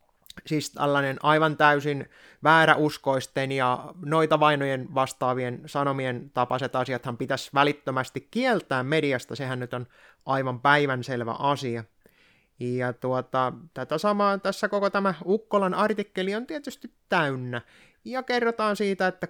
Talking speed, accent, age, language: 120 wpm, native, 20-39, Finnish